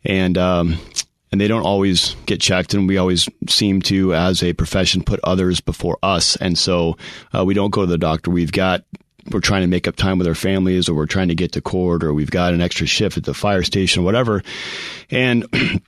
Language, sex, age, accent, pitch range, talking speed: English, male, 30-49, American, 85-100 Hz, 225 wpm